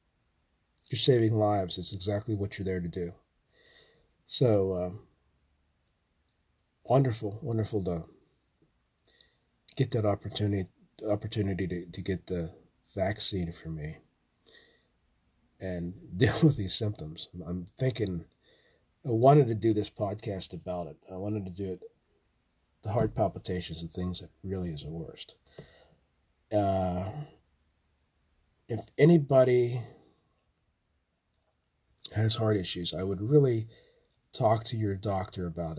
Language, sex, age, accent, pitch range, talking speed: English, male, 40-59, American, 90-115 Hz, 115 wpm